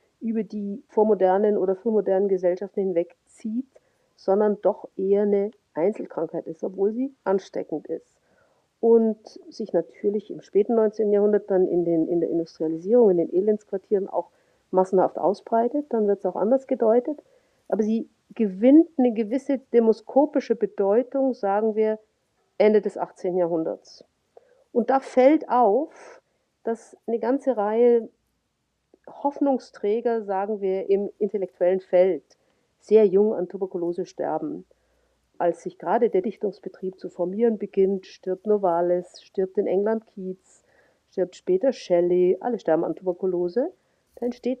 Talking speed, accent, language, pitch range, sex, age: 130 wpm, German, German, 190-255 Hz, female, 50-69